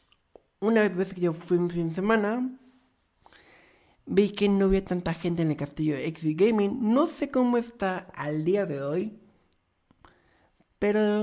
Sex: male